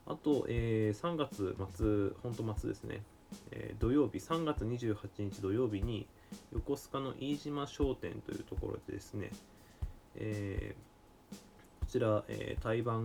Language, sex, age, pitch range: Japanese, male, 20-39, 100-125 Hz